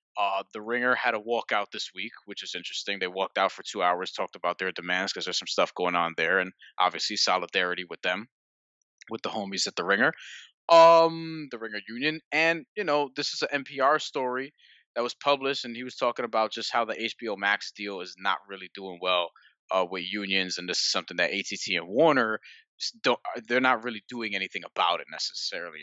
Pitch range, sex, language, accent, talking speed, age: 95-130 Hz, male, English, American, 210 wpm, 20-39